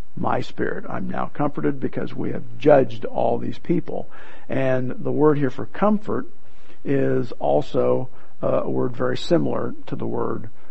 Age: 50-69